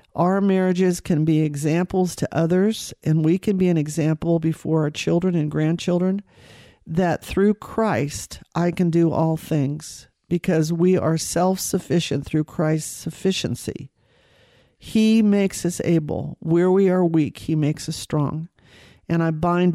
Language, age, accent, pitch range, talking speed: English, 50-69, American, 155-185 Hz, 145 wpm